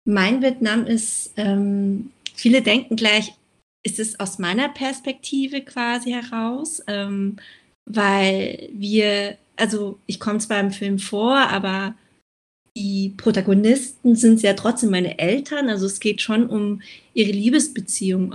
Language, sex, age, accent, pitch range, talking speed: German, female, 30-49, German, 200-240 Hz, 130 wpm